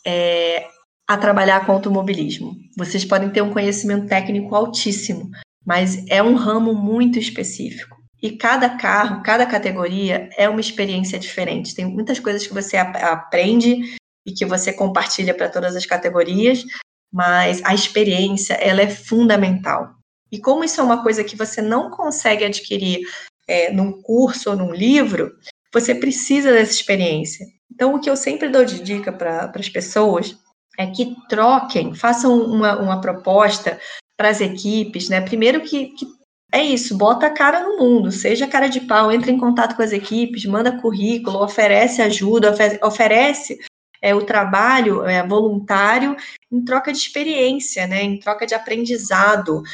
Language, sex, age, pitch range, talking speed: Portuguese, female, 20-39, 195-245 Hz, 155 wpm